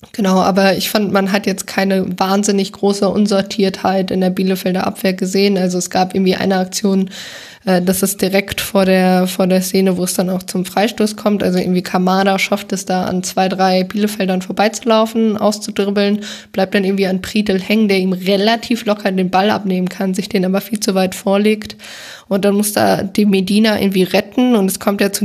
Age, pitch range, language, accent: 20-39, 185-205 Hz, German, German